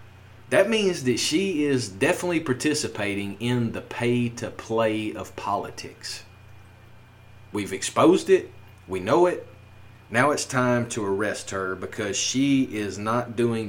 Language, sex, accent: English, male, American